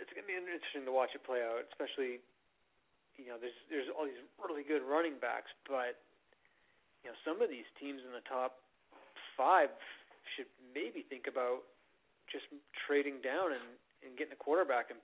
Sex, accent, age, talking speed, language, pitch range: male, American, 30-49, 180 wpm, English, 120-145 Hz